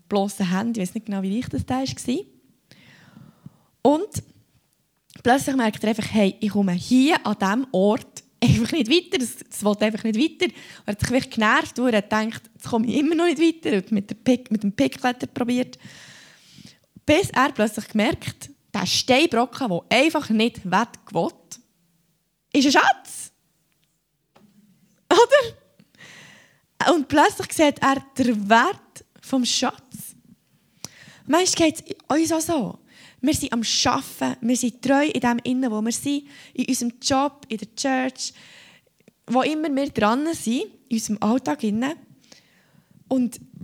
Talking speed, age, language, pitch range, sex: 150 wpm, 20-39, German, 210-270 Hz, female